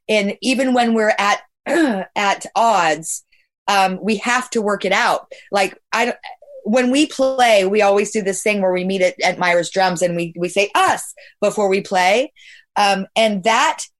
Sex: female